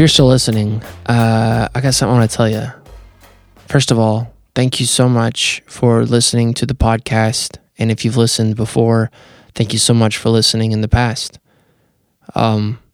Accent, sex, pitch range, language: American, male, 105-115 Hz, English